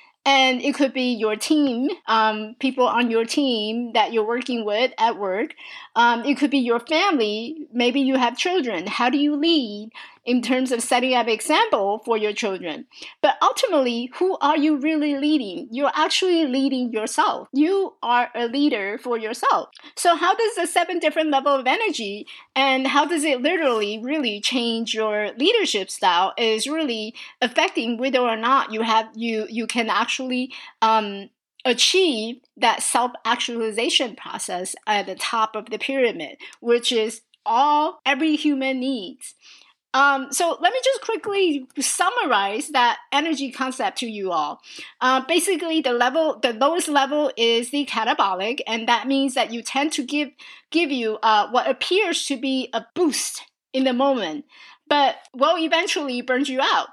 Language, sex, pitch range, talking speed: English, female, 235-310 Hz, 165 wpm